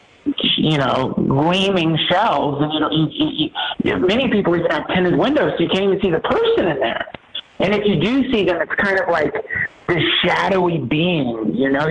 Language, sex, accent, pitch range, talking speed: English, male, American, 150-200 Hz, 200 wpm